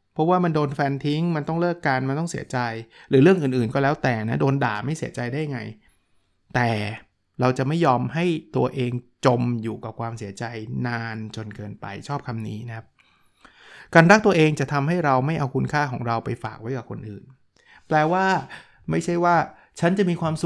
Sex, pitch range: male, 120-155 Hz